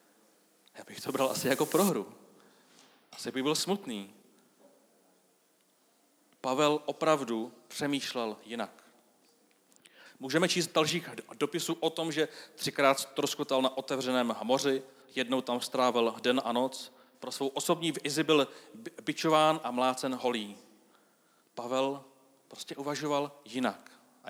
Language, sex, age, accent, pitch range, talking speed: Czech, male, 40-59, native, 120-145 Hz, 120 wpm